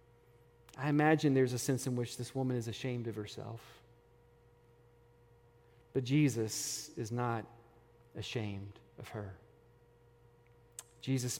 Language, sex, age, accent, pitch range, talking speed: English, male, 40-59, American, 120-185 Hz, 110 wpm